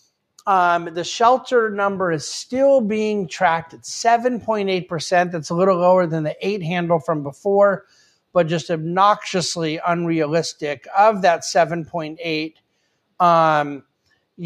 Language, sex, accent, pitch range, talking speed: English, male, American, 155-185 Hz, 110 wpm